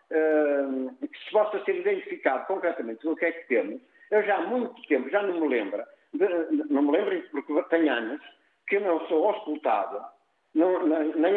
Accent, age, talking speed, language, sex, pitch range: Portuguese, 50-69, 180 wpm, Portuguese, male, 140-220 Hz